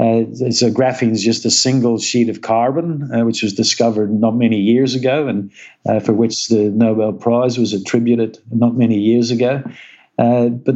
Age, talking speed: 50-69, 185 wpm